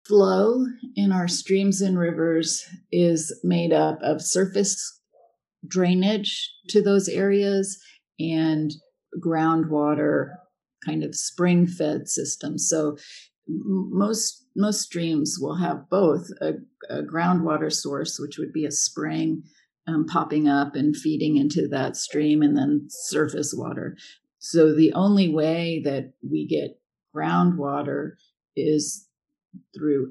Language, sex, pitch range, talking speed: English, female, 150-195 Hz, 120 wpm